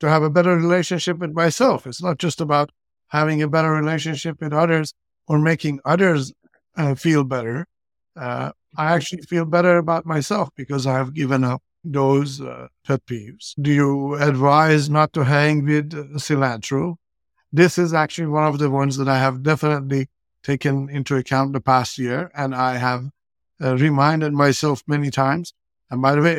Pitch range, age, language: 130-155 Hz, 60-79, English